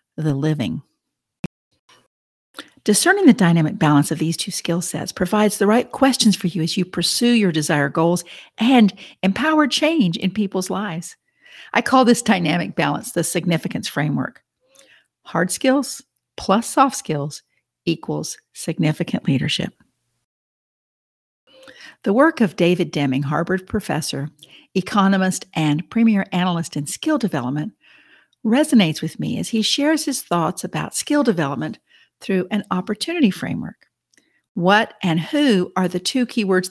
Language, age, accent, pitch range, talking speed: English, 50-69, American, 170-245 Hz, 130 wpm